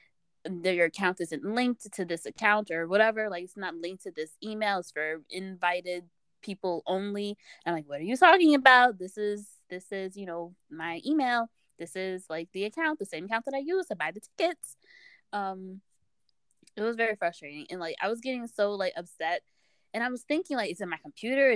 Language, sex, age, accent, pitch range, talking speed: English, female, 20-39, American, 180-250 Hz, 205 wpm